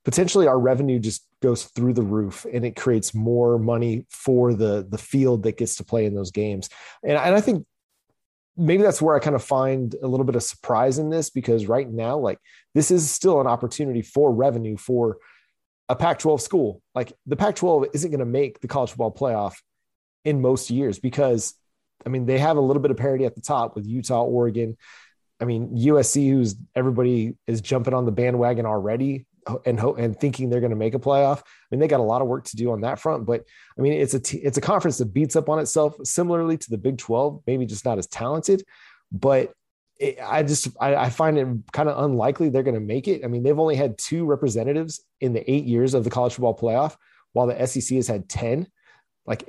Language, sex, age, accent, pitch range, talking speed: English, male, 30-49, American, 115-140 Hz, 225 wpm